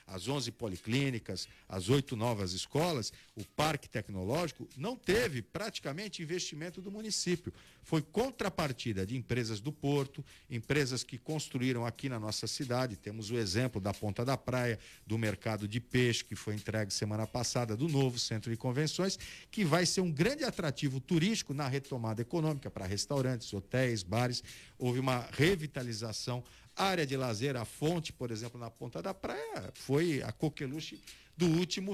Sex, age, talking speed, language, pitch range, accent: male, 50-69, 155 wpm, Portuguese, 115-155 Hz, Brazilian